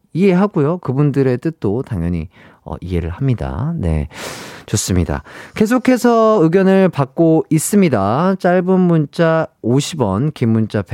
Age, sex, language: 40-59, male, Korean